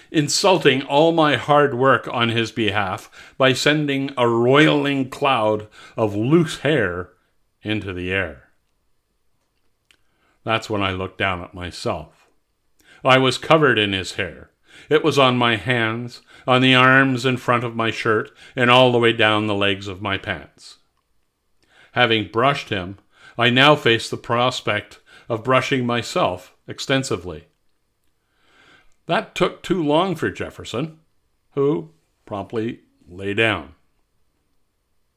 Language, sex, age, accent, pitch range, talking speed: English, male, 50-69, American, 105-135 Hz, 130 wpm